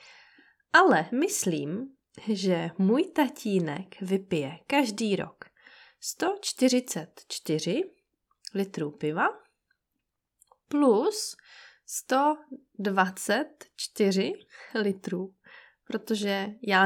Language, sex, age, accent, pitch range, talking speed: Czech, female, 20-39, native, 185-280 Hz, 55 wpm